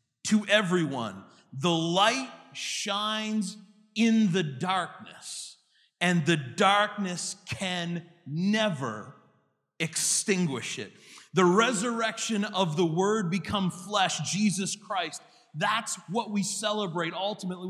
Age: 30-49